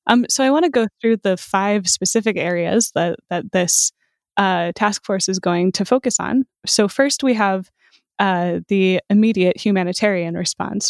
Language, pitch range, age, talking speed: English, 180-210 Hz, 20-39, 170 wpm